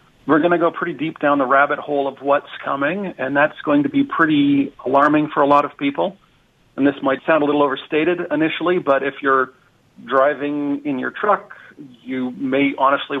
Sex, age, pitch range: male, 40-59, 135-155 Hz